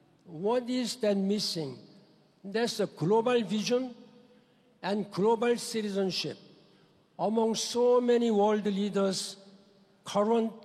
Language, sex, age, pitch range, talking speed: English, male, 60-79, 190-235 Hz, 100 wpm